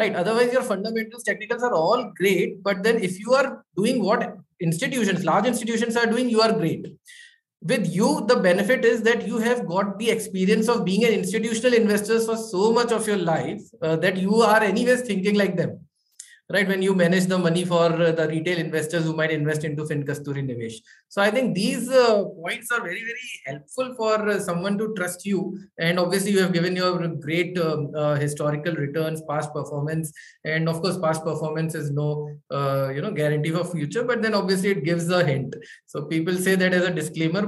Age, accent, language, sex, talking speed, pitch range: 20-39, Indian, English, male, 200 wpm, 160-205 Hz